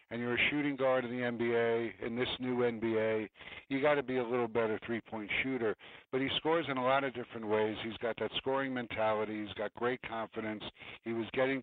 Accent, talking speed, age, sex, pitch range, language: American, 215 wpm, 60-79, male, 115-135 Hz, English